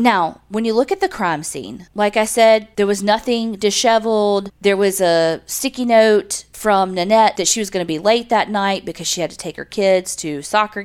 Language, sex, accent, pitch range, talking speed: English, female, American, 170-220 Hz, 220 wpm